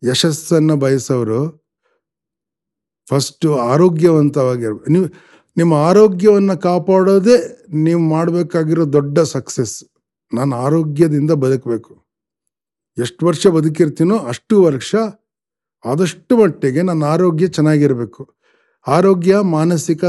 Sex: male